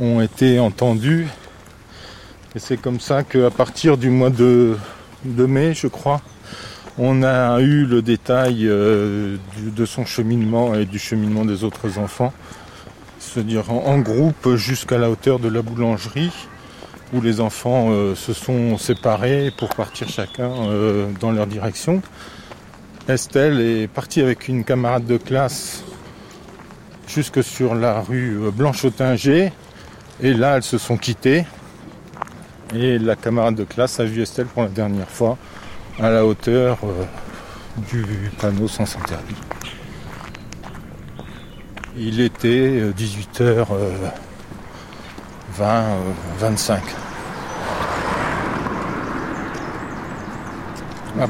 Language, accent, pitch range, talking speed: French, French, 105-125 Hz, 120 wpm